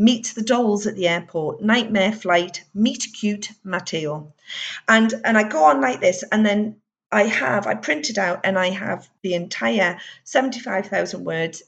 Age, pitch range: 40-59, 185-230 Hz